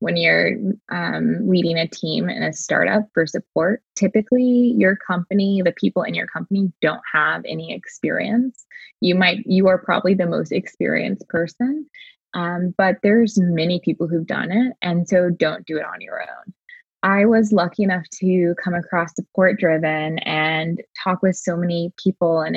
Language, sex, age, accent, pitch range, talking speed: English, female, 20-39, American, 170-210 Hz, 170 wpm